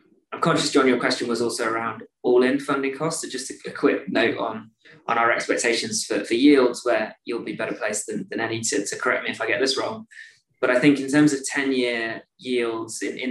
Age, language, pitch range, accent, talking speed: 20-39, English, 115-150 Hz, British, 235 wpm